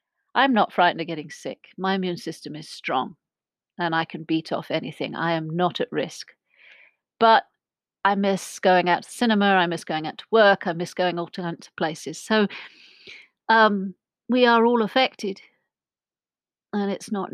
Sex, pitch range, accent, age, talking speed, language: female, 175-205 Hz, British, 40-59, 175 wpm, English